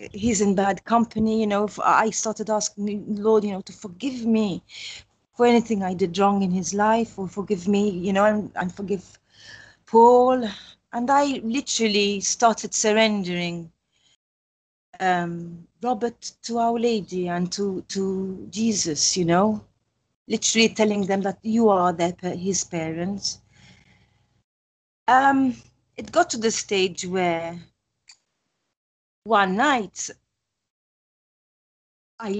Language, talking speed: English, 125 wpm